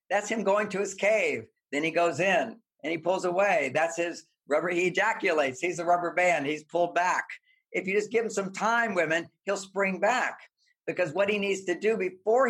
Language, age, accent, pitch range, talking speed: English, 50-69, American, 160-210 Hz, 210 wpm